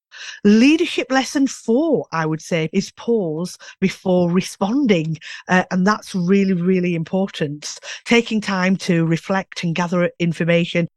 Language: English